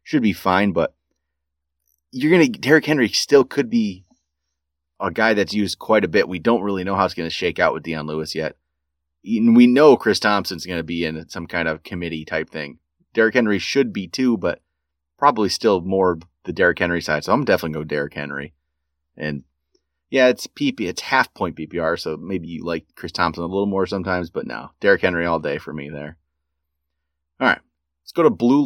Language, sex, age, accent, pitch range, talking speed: English, male, 30-49, American, 70-105 Hz, 205 wpm